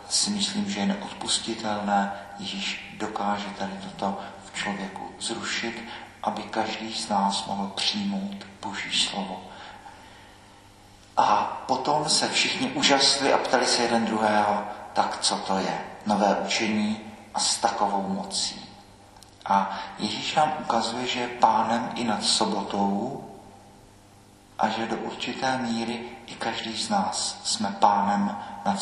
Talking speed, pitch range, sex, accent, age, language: 130 wpm, 105-115 Hz, male, native, 50-69, Czech